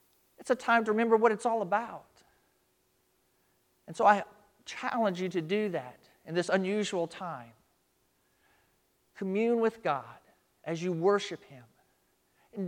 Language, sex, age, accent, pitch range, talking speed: English, male, 40-59, American, 155-225 Hz, 135 wpm